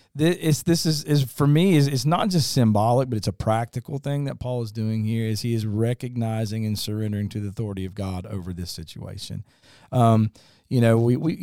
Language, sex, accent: English, male, American